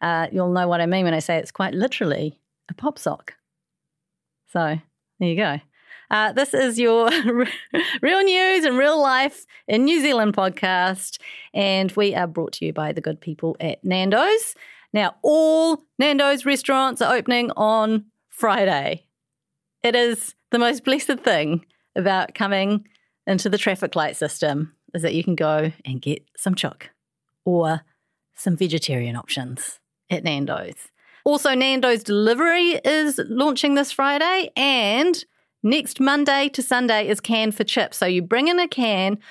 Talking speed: 155 wpm